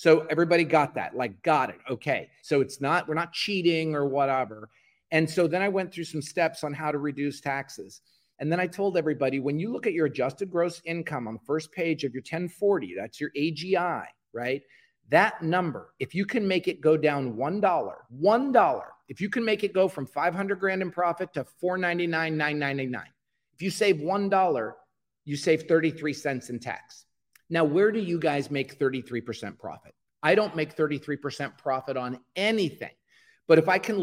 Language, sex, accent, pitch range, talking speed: English, male, American, 145-180 Hz, 185 wpm